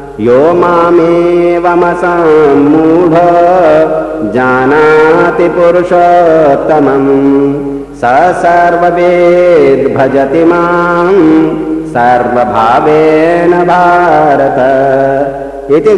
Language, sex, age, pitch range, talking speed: Hindi, male, 50-69, 135-170 Hz, 40 wpm